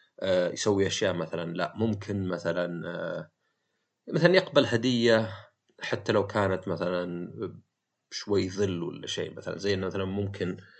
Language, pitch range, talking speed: Arabic, 95-125 Hz, 115 wpm